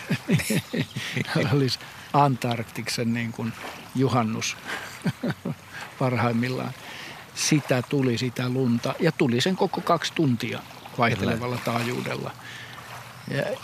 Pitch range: 120-150 Hz